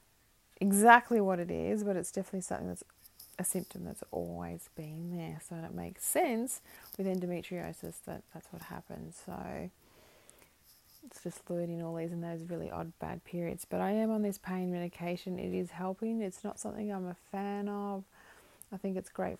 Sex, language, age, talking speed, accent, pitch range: female, English, 20-39, 180 wpm, Australian, 170-195 Hz